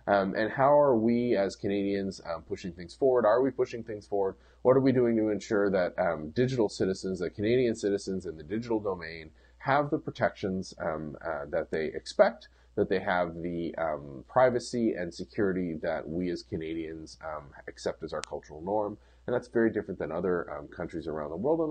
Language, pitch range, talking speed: English, 90-120 Hz, 195 wpm